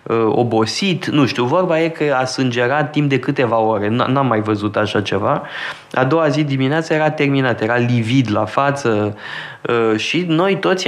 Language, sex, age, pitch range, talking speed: Romanian, male, 20-39, 120-165 Hz, 170 wpm